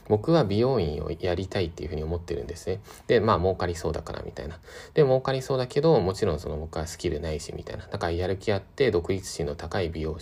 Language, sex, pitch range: Japanese, male, 85-135 Hz